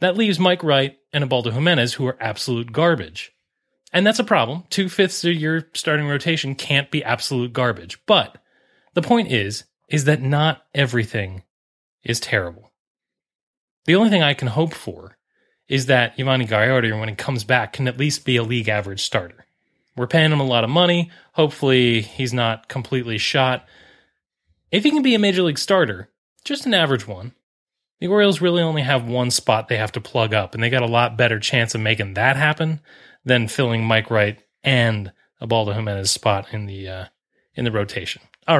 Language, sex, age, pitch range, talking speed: English, male, 30-49, 110-155 Hz, 185 wpm